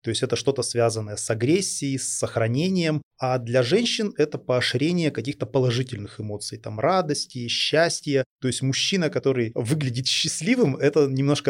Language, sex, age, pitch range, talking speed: Russian, male, 30-49, 115-145 Hz, 145 wpm